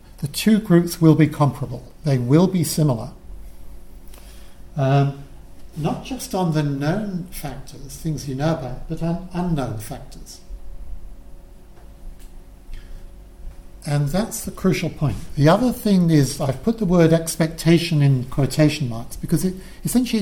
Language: English